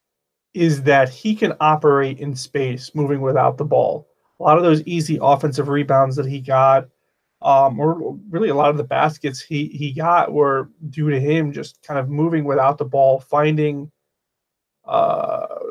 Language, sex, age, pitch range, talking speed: English, male, 30-49, 135-155 Hz, 170 wpm